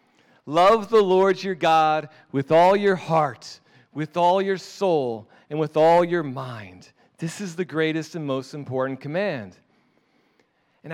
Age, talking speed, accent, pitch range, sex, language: 40-59, 150 wpm, American, 135-210 Hz, male, English